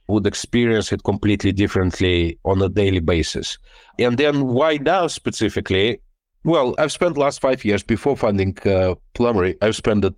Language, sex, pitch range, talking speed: English, male, 100-120 Hz, 160 wpm